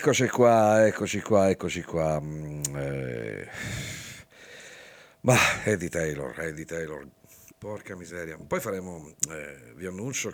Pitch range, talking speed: 75-95 Hz, 110 wpm